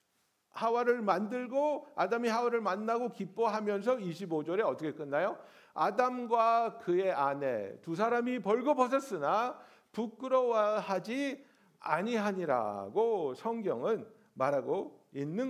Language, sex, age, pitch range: Korean, male, 60-79, 205-275 Hz